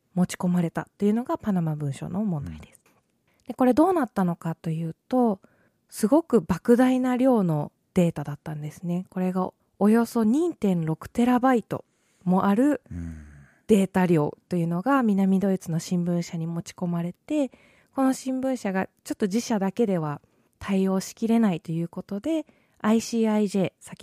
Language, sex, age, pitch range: Japanese, female, 20-39, 170-230 Hz